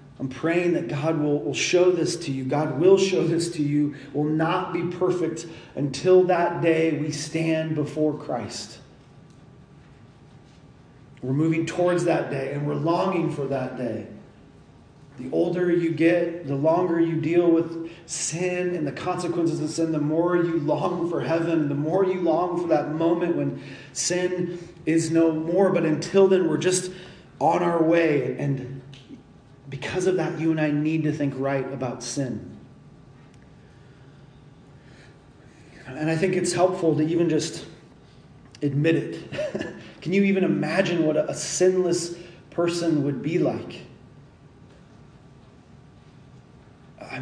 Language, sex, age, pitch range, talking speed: English, male, 40-59, 140-170 Hz, 145 wpm